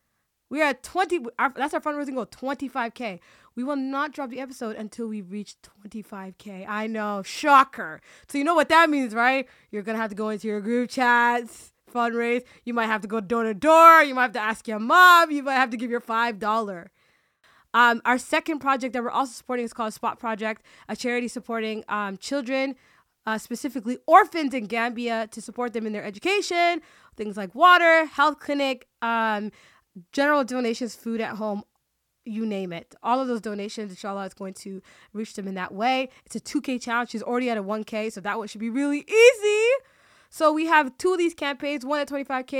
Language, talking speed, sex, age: English, 200 wpm, female, 20-39